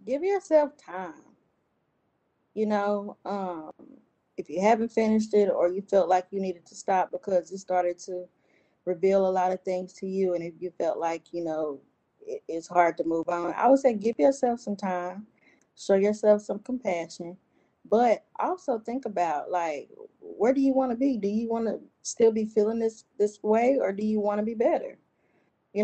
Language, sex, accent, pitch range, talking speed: English, female, American, 185-235 Hz, 190 wpm